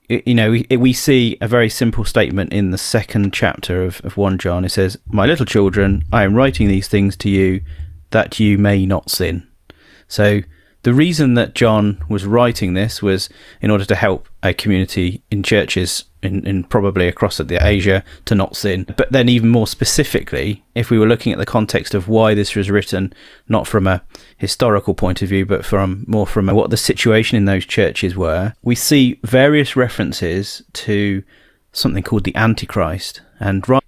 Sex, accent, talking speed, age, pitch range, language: male, British, 185 wpm, 30-49, 95-115 Hz, English